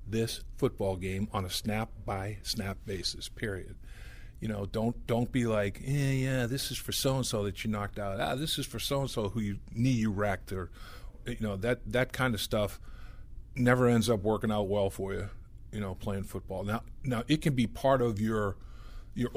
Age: 50-69